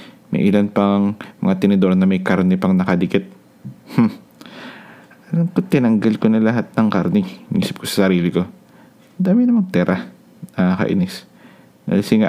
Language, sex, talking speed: Filipino, male, 140 wpm